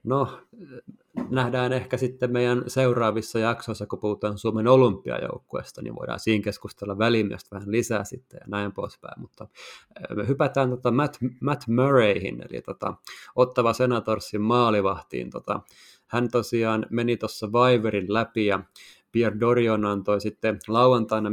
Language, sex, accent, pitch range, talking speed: Finnish, male, native, 105-120 Hz, 130 wpm